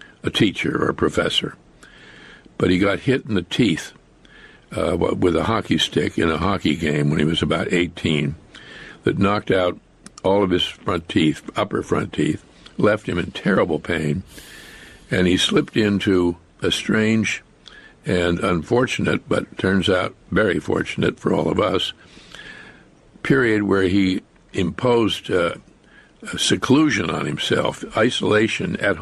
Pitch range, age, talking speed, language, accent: 90-110 Hz, 60-79, 145 wpm, English, American